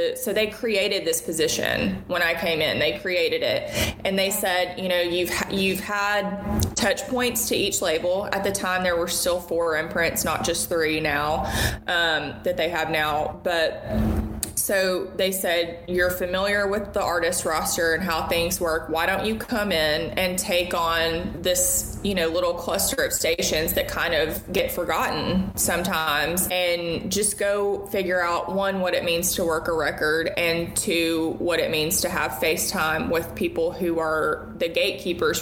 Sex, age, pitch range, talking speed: female, 20-39, 165-195 Hz, 175 wpm